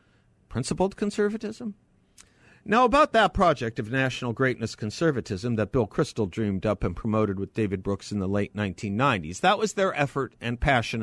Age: 50-69